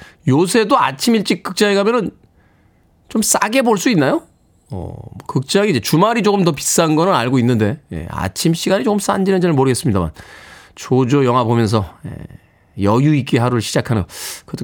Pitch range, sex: 110-165 Hz, male